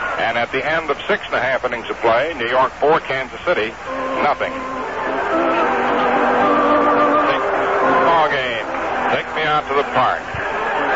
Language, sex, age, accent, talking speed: English, male, 60-79, American, 150 wpm